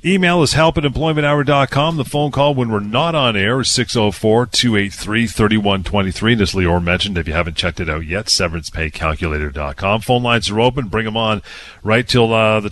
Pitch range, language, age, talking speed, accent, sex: 100-125 Hz, English, 40-59, 170 wpm, American, male